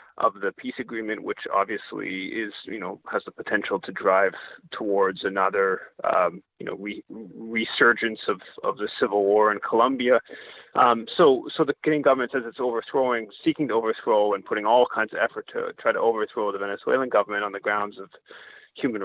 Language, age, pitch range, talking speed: English, 30-49, 105-145 Hz, 180 wpm